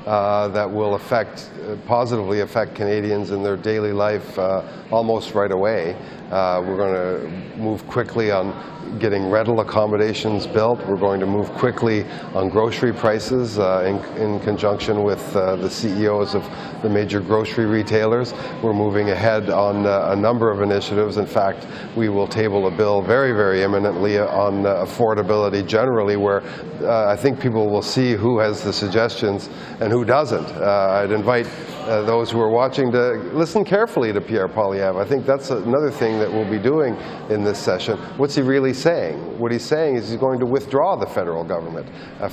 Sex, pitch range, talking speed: male, 100-115 Hz, 175 wpm